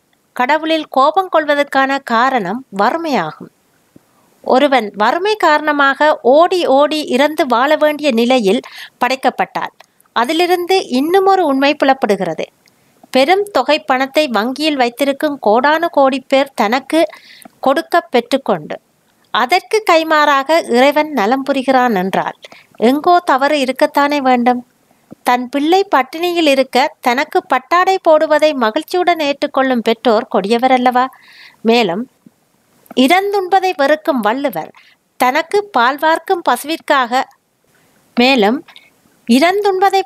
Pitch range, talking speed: 245-315 Hz, 90 wpm